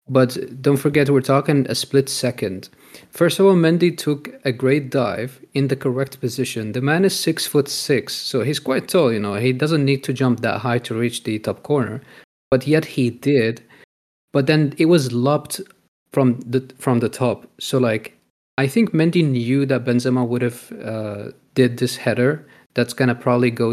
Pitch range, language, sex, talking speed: 120-140 Hz, English, male, 195 wpm